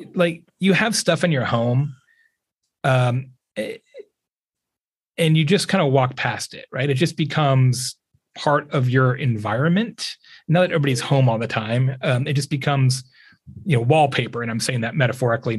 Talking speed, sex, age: 165 wpm, male, 30-49